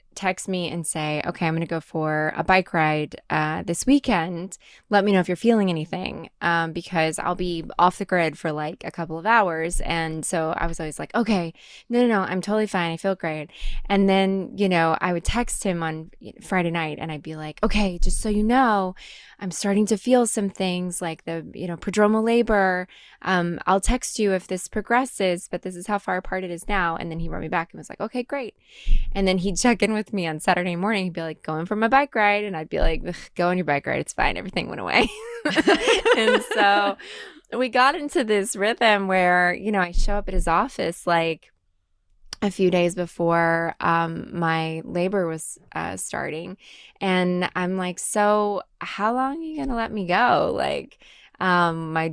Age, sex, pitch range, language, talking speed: 20-39, female, 165-210 Hz, English, 215 wpm